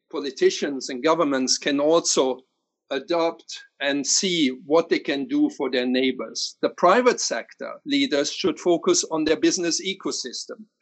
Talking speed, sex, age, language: 140 wpm, male, 50-69, English